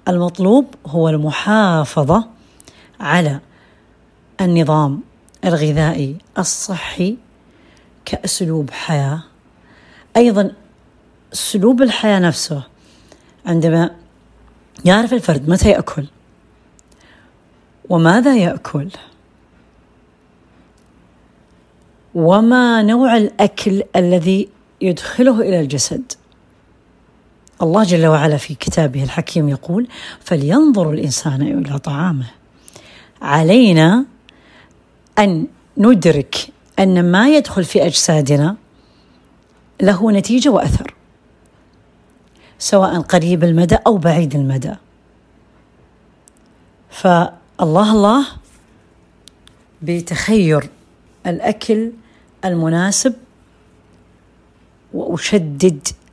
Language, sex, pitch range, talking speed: Arabic, female, 150-205 Hz, 65 wpm